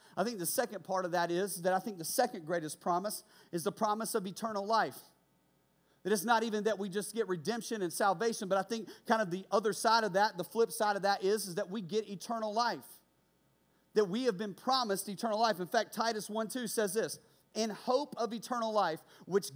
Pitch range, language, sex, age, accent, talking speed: 180-230 Hz, English, male, 40-59, American, 225 wpm